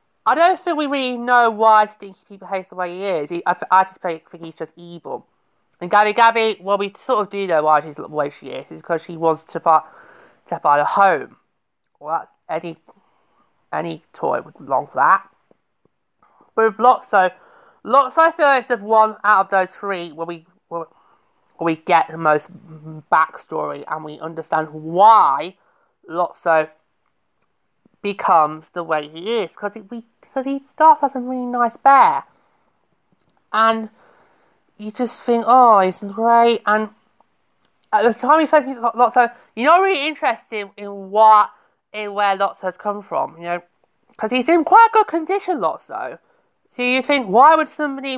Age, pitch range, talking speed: 30-49, 185-270 Hz, 180 wpm